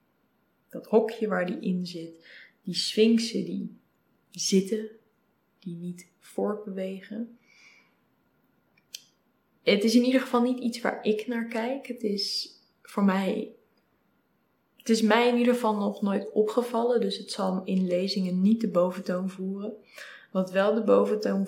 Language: Dutch